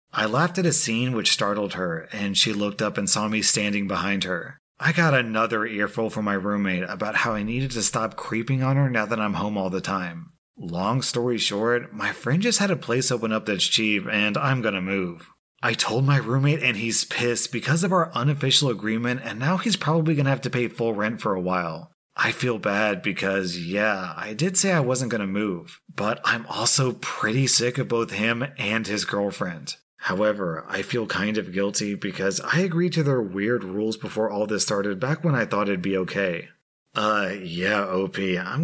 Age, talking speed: 30-49, 210 wpm